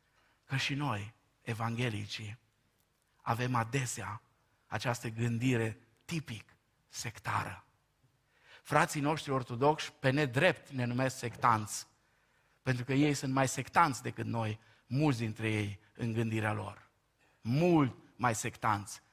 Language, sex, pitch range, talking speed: Romanian, male, 115-155 Hz, 110 wpm